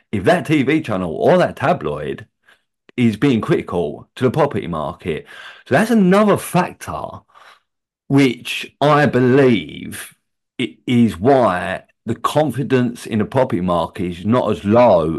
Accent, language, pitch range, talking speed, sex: British, English, 95-145 Hz, 130 wpm, male